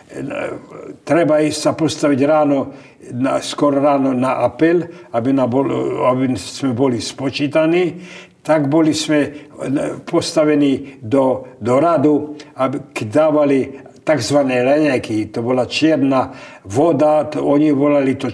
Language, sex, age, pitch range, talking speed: Slovak, male, 60-79, 135-165 Hz, 110 wpm